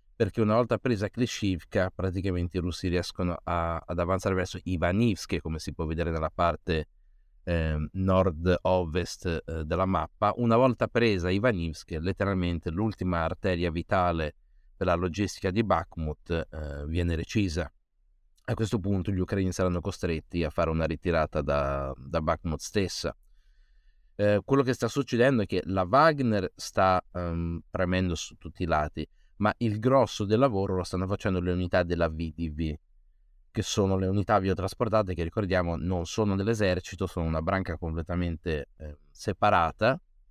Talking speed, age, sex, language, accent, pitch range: 150 wpm, 30-49, male, Italian, native, 85-95 Hz